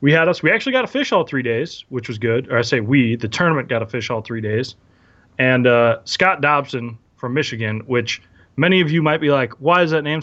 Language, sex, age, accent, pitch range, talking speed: English, male, 20-39, American, 115-155 Hz, 250 wpm